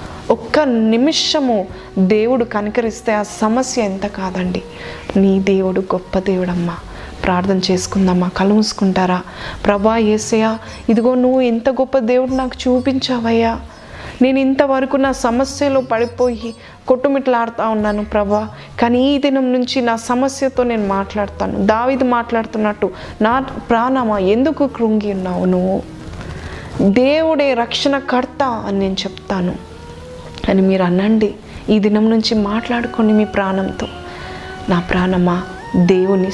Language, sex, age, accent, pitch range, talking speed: Telugu, female, 20-39, native, 195-250 Hz, 105 wpm